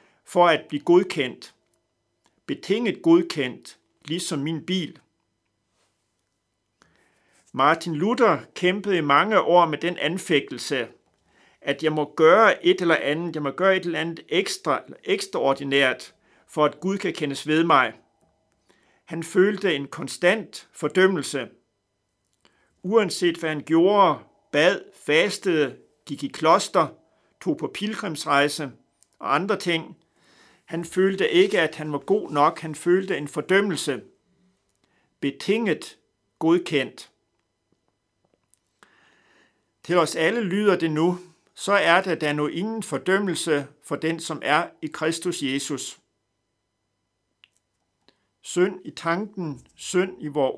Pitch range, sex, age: 140-185 Hz, male, 60-79